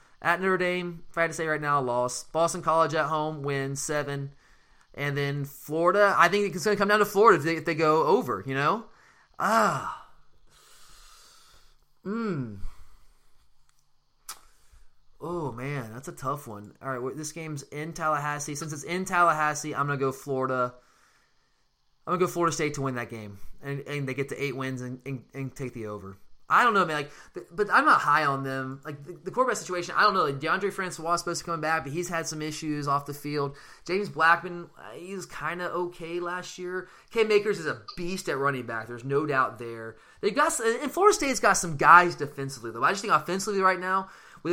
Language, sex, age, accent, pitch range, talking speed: English, male, 20-39, American, 135-175 Hz, 215 wpm